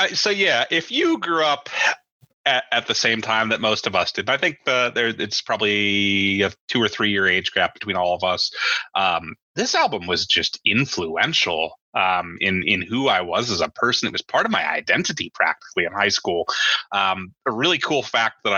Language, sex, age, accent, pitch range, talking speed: English, male, 30-49, American, 95-120 Hz, 205 wpm